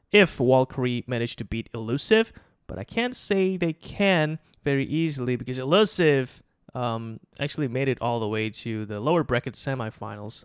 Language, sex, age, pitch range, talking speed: English, male, 20-39, 115-150 Hz, 160 wpm